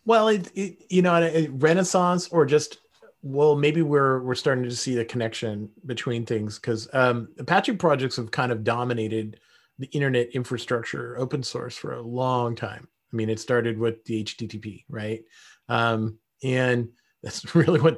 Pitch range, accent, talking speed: 115-145 Hz, American, 155 wpm